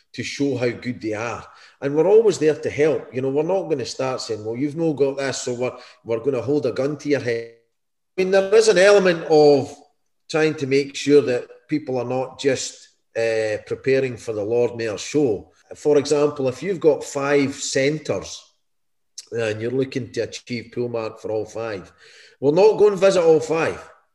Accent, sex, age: British, male, 40-59